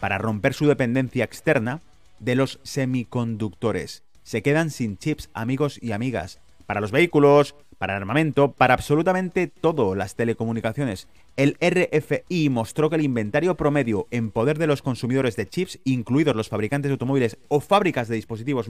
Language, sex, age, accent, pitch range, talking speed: Spanish, male, 30-49, Spanish, 110-155 Hz, 155 wpm